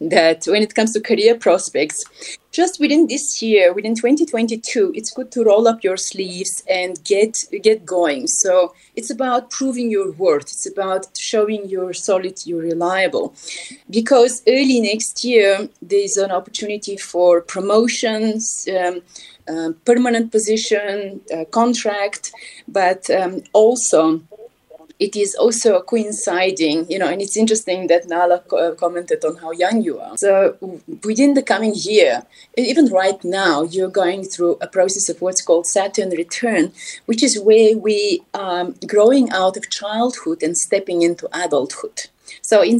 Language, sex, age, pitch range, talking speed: English, female, 30-49, 180-235 Hz, 150 wpm